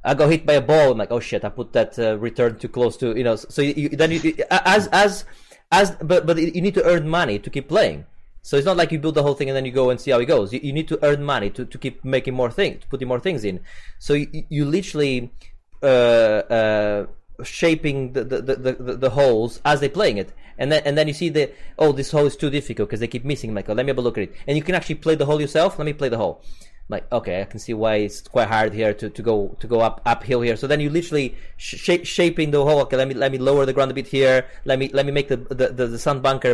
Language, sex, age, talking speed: English, male, 20-39, 290 wpm